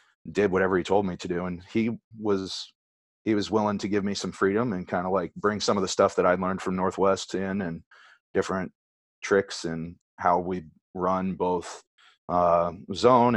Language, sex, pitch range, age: English, male, 85-100 Hz, 30-49